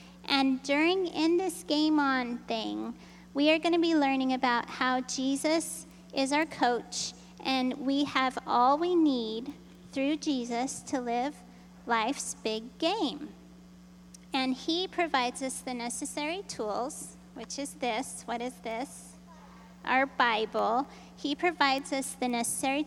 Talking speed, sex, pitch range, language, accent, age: 135 wpm, female, 195-275 Hz, English, American, 30-49